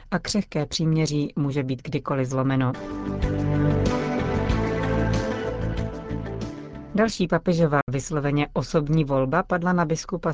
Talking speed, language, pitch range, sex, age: 85 wpm, Czech, 145-170 Hz, female, 40-59